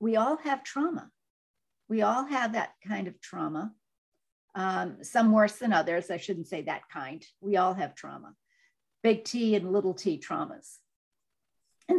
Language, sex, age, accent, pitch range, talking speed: English, female, 50-69, American, 190-240 Hz, 160 wpm